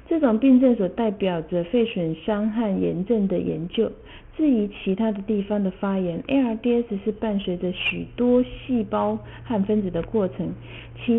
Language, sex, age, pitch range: Chinese, female, 50-69, 180-230 Hz